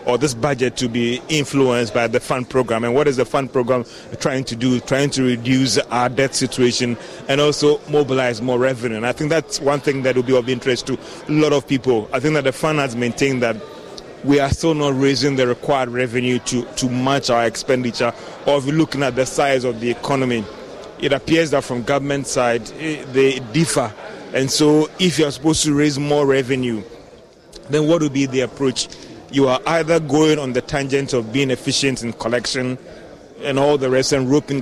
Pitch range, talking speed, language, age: 125-150 Hz, 205 wpm, English, 30-49